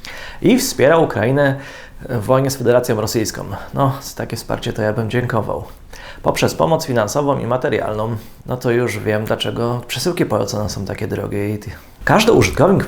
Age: 30-49